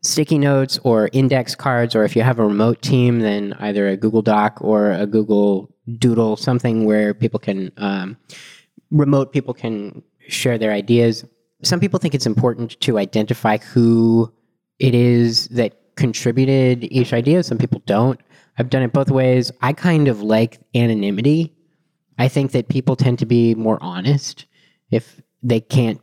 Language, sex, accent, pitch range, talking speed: English, male, American, 105-135 Hz, 165 wpm